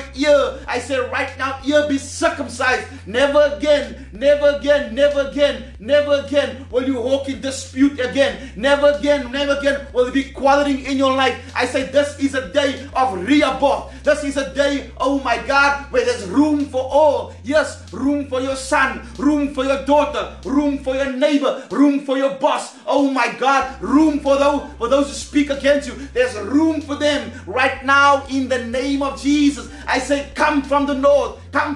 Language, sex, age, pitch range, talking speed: English, male, 30-49, 265-285 Hz, 190 wpm